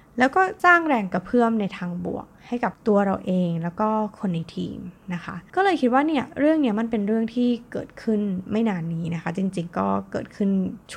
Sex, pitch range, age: female, 175-235 Hz, 20-39